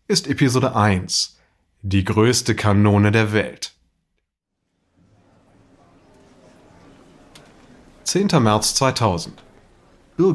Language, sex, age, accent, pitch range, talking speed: German, male, 30-49, German, 100-135 Hz, 70 wpm